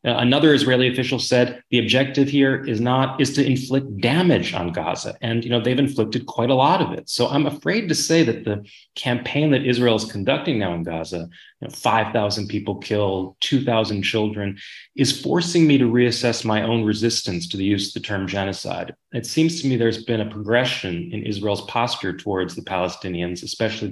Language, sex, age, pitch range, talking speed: English, male, 30-49, 100-125 Hz, 195 wpm